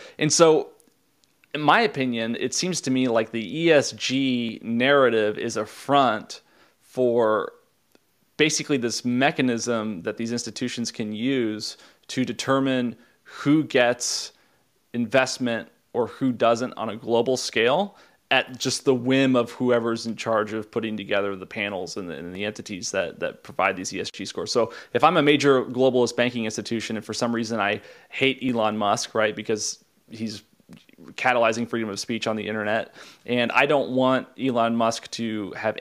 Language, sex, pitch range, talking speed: English, male, 115-130 Hz, 160 wpm